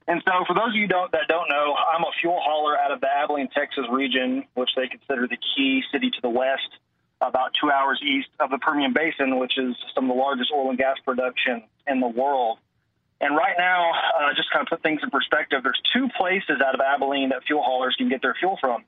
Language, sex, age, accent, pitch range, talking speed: English, male, 30-49, American, 130-170 Hz, 240 wpm